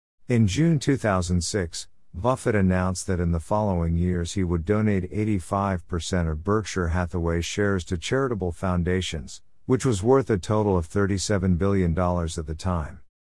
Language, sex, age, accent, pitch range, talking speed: English, male, 50-69, American, 85-115 Hz, 145 wpm